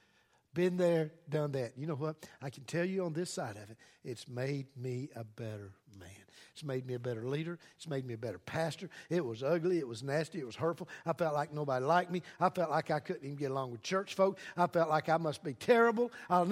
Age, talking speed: 60-79, 245 wpm